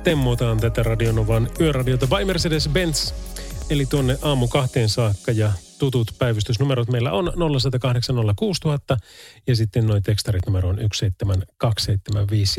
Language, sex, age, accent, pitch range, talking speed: Finnish, male, 30-49, native, 105-140 Hz, 115 wpm